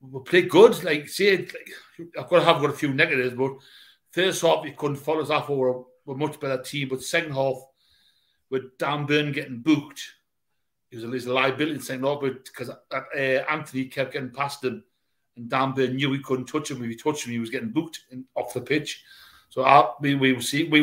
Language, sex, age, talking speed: English, male, 60-79, 225 wpm